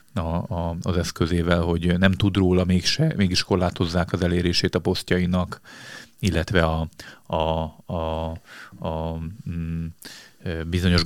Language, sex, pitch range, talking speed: Hungarian, male, 85-95 Hz, 100 wpm